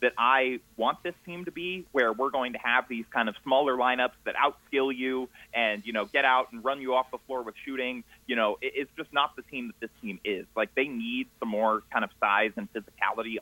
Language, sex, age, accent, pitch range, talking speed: English, male, 30-49, American, 105-130 Hz, 240 wpm